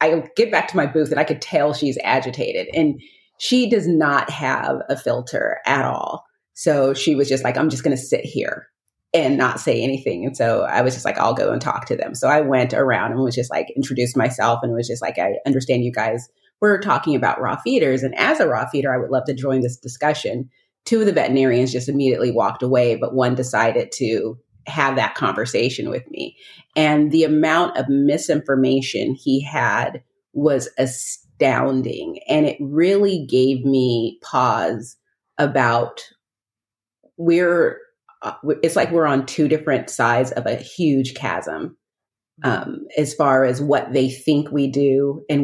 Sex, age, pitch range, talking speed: female, 30-49, 130-155 Hz, 180 wpm